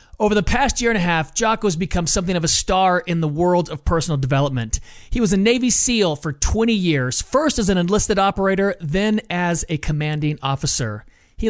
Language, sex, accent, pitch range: English, male, American, 160-215 Hz